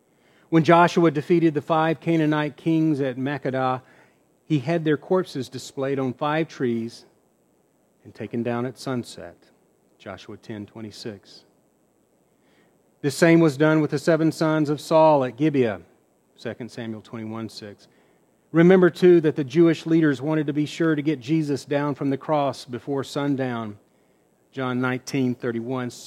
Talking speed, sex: 140 wpm, male